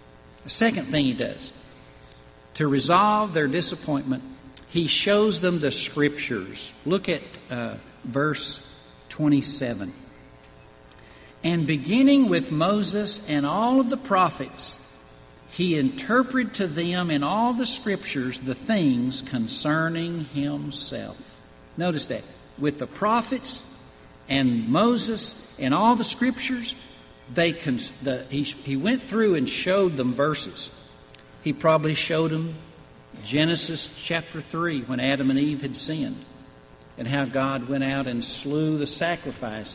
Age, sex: 50-69, male